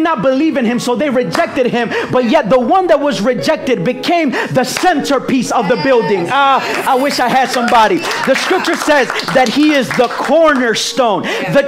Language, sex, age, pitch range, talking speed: English, male, 30-49, 245-300 Hz, 190 wpm